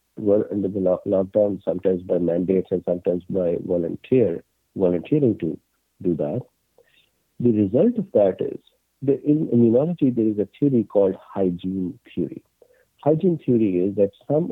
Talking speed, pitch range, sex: 145 wpm, 95-130 Hz, male